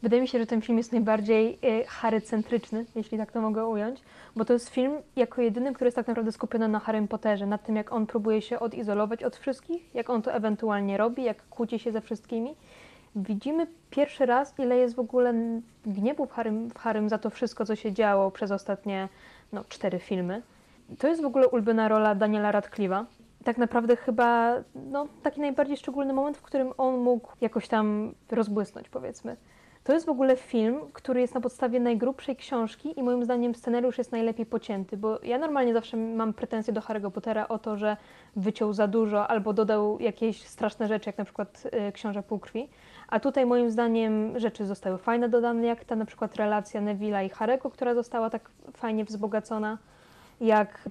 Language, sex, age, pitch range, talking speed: Polish, female, 20-39, 215-245 Hz, 185 wpm